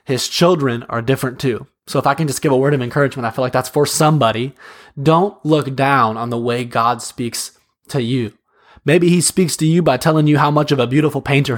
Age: 20-39